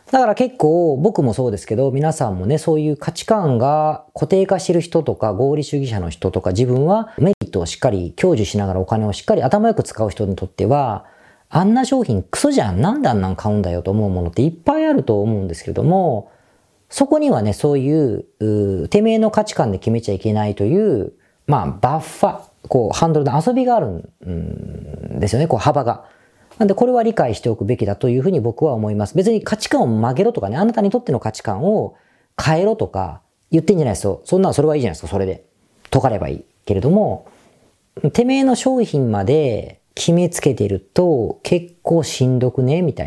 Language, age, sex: Japanese, 40-59, female